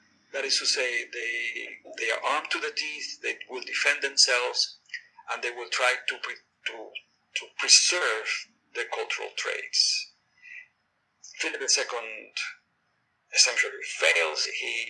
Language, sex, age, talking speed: English, male, 50-69, 130 wpm